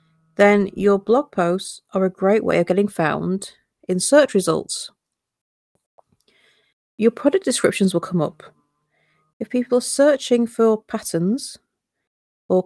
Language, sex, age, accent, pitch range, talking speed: English, female, 40-59, British, 180-230 Hz, 130 wpm